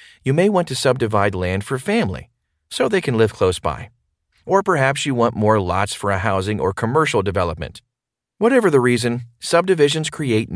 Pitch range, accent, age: 100-135 Hz, American, 40-59